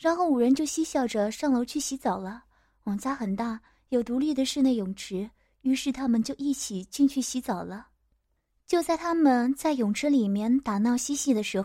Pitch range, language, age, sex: 225-285 Hz, Chinese, 20-39, female